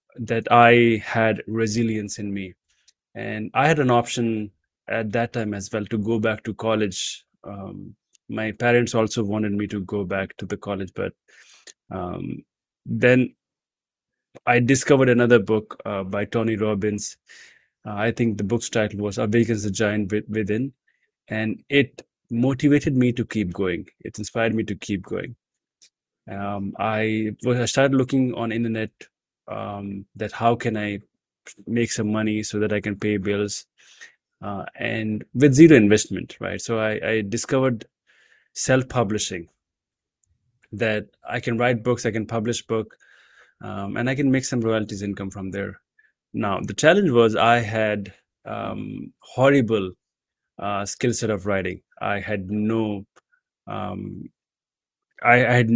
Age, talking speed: 20-39, 150 wpm